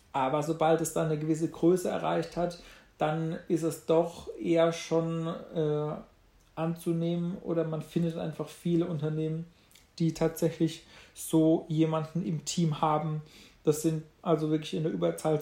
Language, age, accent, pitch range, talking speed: German, 40-59, German, 160-175 Hz, 145 wpm